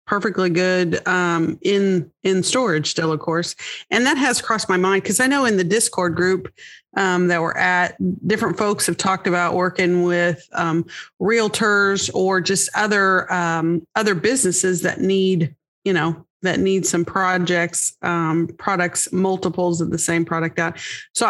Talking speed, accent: 160 wpm, American